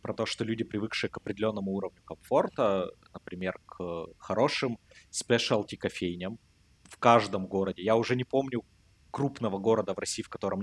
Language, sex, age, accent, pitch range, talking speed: Russian, male, 20-39, native, 95-115 Hz, 150 wpm